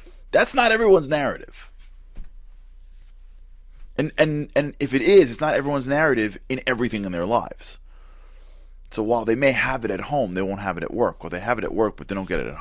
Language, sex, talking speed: English, male, 215 wpm